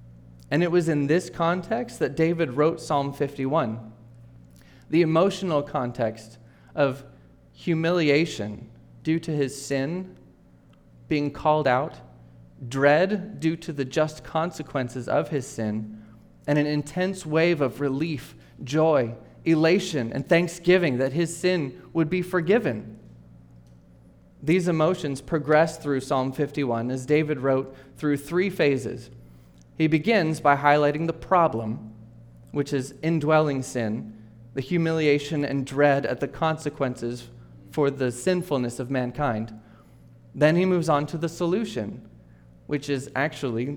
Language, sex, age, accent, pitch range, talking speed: English, male, 30-49, American, 110-160 Hz, 125 wpm